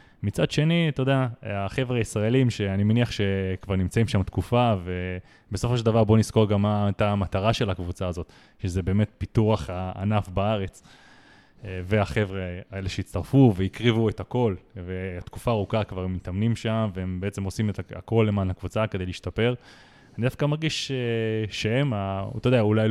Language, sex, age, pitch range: Hebrew, male, 20-39, 100-120 Hz